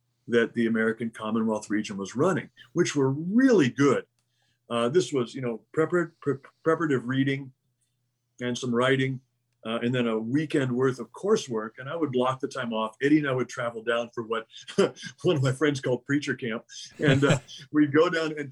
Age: 50-69